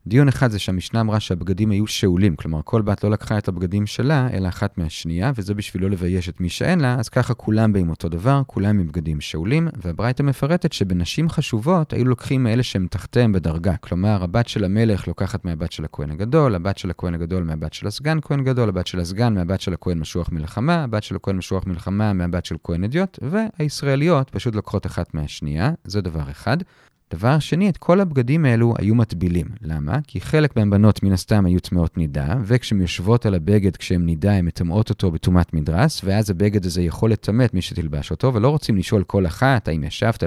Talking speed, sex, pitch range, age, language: 190 wpm, male, 90-135 Hz, 30-49, Hebrew